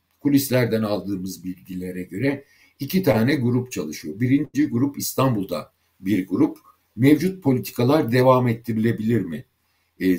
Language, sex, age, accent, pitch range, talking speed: Turkish, male, 60-79, native, 95-125 Hz, 110 wpm